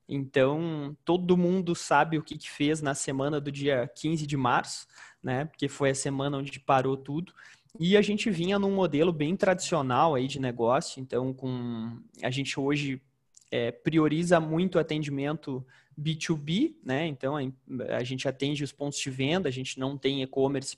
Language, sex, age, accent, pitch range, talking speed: Portuguese, male, 20-39, Brazilian, 135-165 Hz, 170 wpm